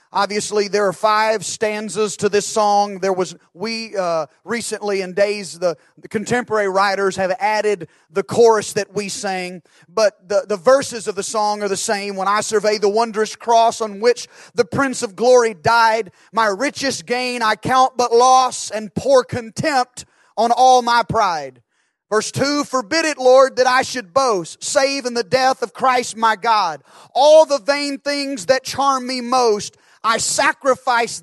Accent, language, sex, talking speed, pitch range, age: American, English, male, 175 wpm, 205-255 Hz, 30-49